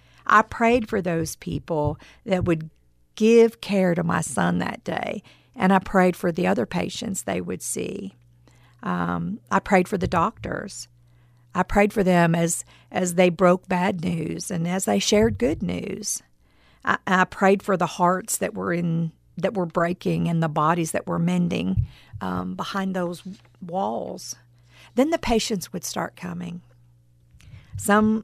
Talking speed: 160 wpm